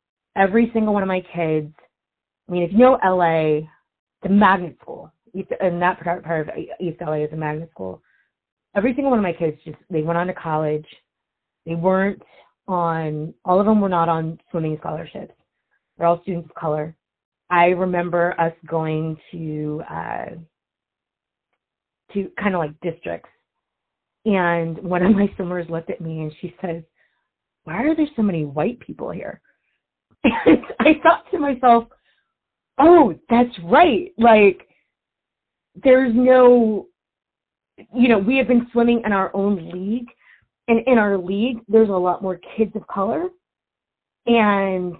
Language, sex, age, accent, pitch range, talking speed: English, female, 30-49, American, 170-235 Hz, 155 wpm